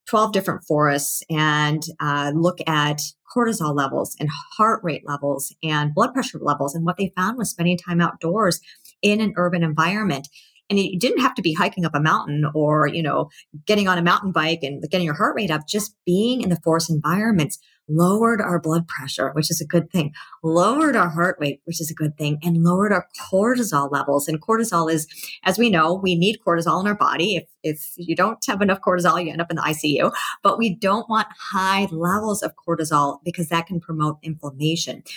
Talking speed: 205 wpm